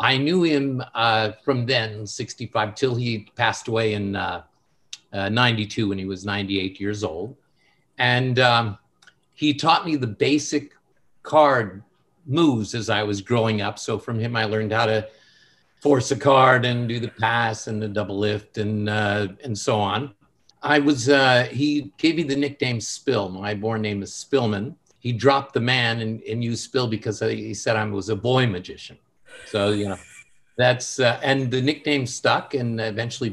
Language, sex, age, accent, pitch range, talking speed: English, male, 50-69, American, 105-135 Hz, 180 wpm